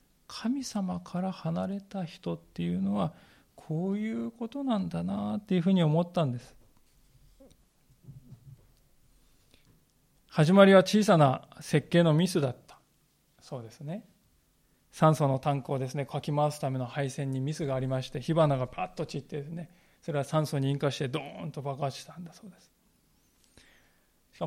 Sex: male